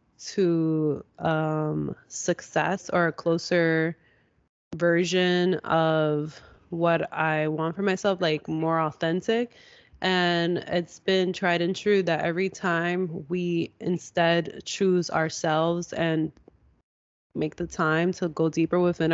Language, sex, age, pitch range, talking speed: English, female, 20-39, 160-185 Hz, 115 wpm